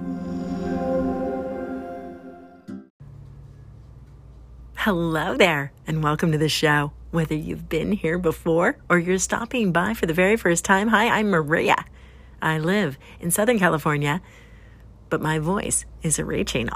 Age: 50-69